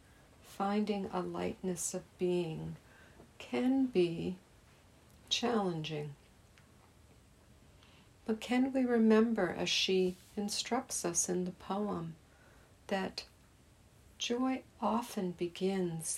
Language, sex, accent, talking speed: English, female, American, 85 wpm